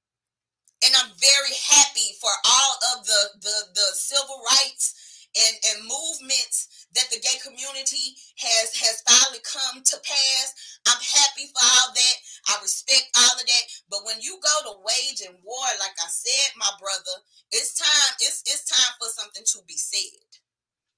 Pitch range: 235-315 Hz